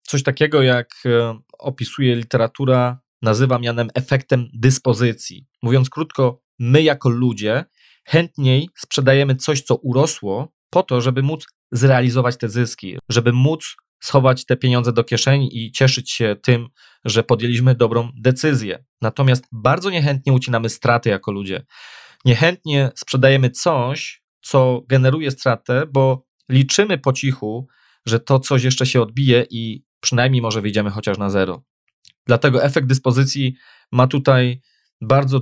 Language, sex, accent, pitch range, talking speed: Polish, male, native, 120-135 Hz, 130 wpm